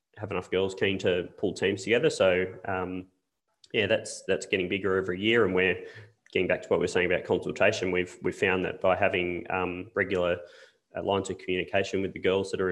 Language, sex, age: English, male, 20-39